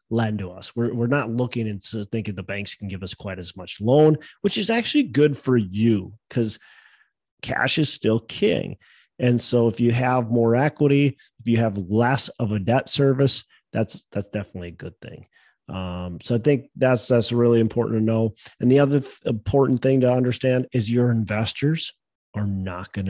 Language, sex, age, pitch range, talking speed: English, male, 30-49, 100-130 Hz, 190 wpm